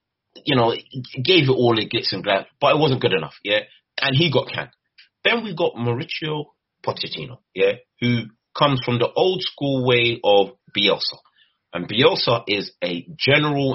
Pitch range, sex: 115-150 Hz, male